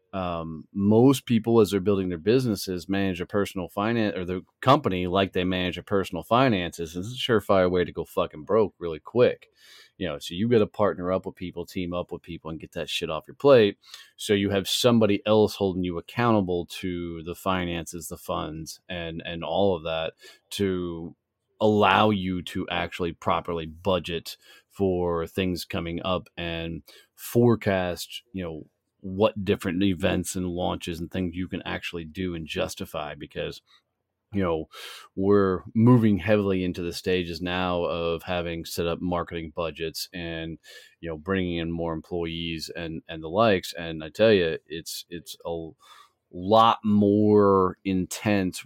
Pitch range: 85-100 Hz